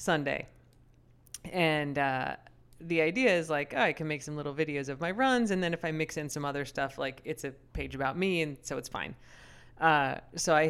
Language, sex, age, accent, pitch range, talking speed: English, female, 30-49, American, 140-180 Hz, 215 wpm